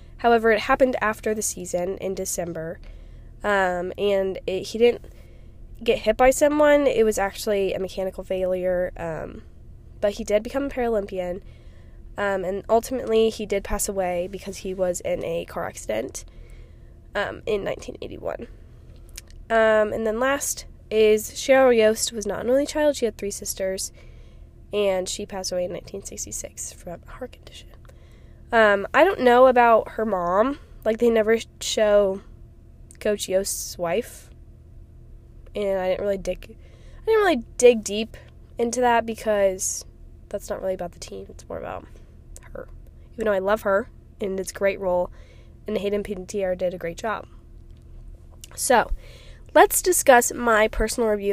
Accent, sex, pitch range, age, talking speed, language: American, female, 190-235 Hz, 10-29, 155 wpm, English